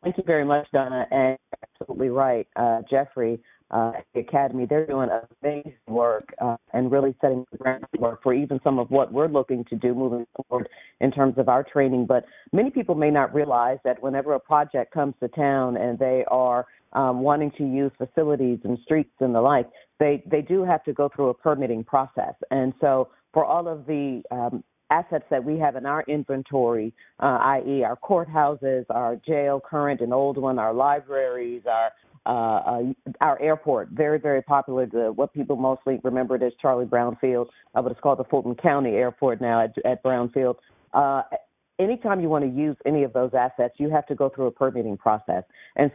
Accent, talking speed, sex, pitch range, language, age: American, 195 wpm, female, 125-145 Hz, English, 40-59